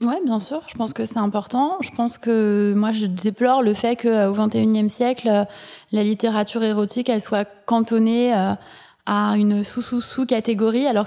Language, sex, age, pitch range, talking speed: French, female, 20-39, 210-240 Hz, 180 wpm